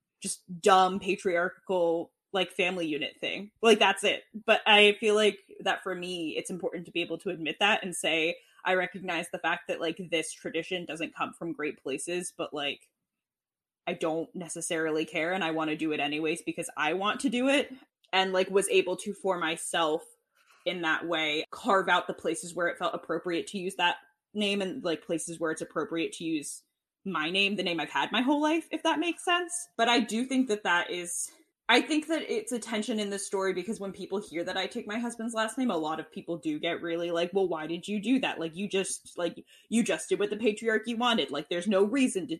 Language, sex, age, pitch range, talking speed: English, female, 20-39, 170-230 Hz, 225 wpm